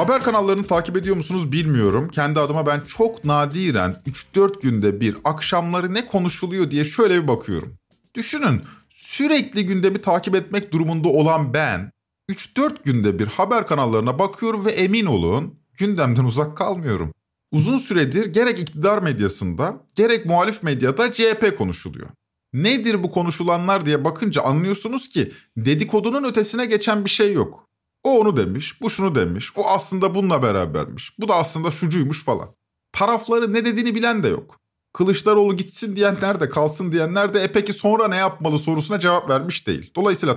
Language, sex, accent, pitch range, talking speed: Turkish, male, native, 150-210 Hz, 150 wpm